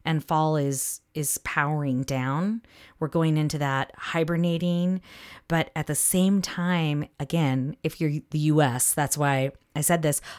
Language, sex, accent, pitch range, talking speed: English, female, American, 140-185 Hz, 150 wpm